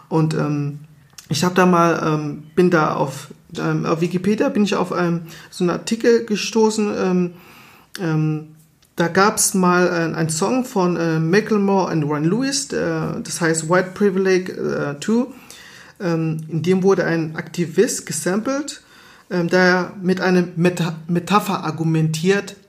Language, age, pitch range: German, 40-59, 155-190 Hz